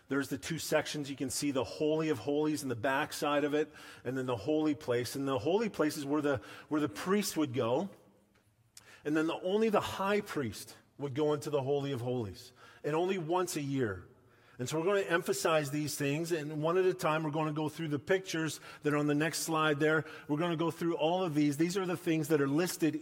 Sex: male